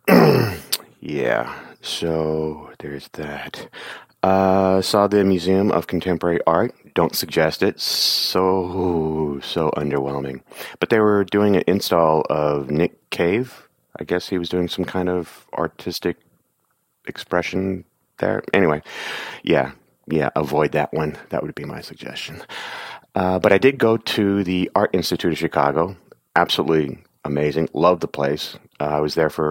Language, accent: English, American